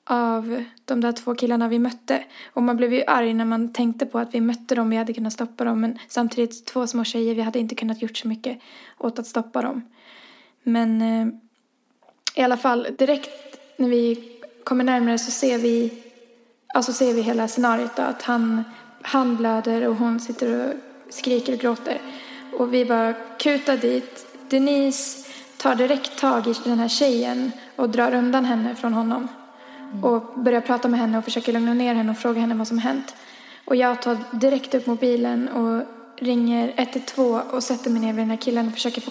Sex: female